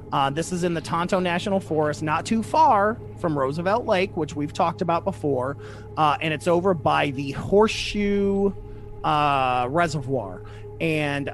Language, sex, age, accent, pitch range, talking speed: English, male, 30-49, American, 125-185 Hz, 155 wpm